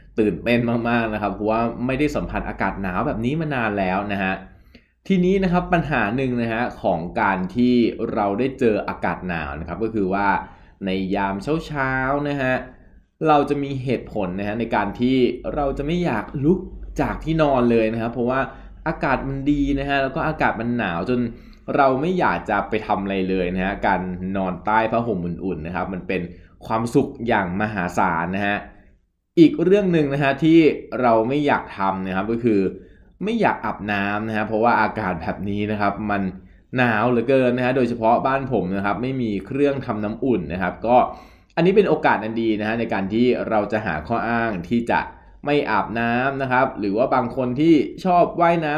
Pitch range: 100-135 Hz